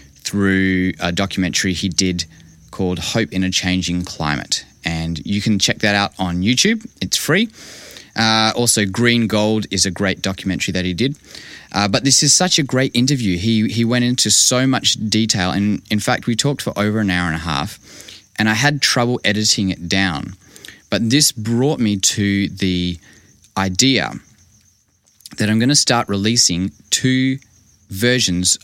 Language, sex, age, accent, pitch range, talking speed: English, male, 20-39, Australian, 95-115 Hz, 170 wpm